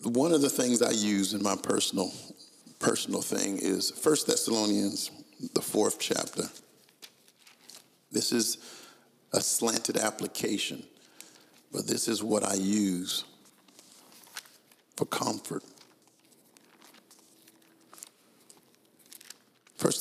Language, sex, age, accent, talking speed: English, male, 50-69, American, 95 wpm